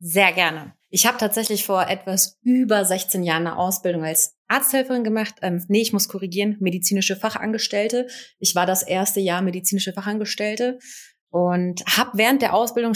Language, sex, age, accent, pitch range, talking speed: German, female, 30-49, German, 180-220 Hz, 155 wpm